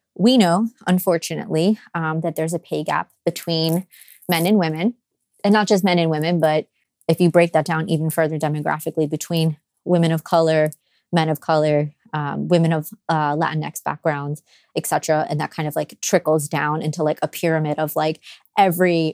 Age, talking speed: 20-39, 180 wpm